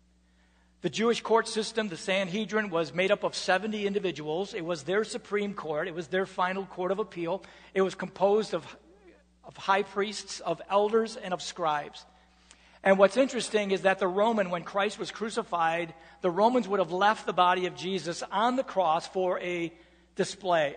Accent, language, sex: American, English, male